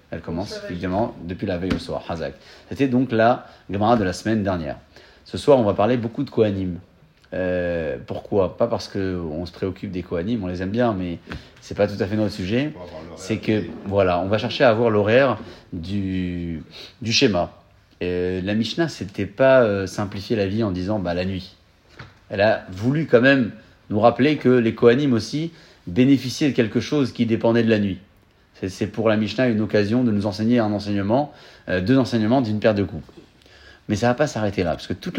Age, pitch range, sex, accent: 30-49, 90-120 Hz, male, French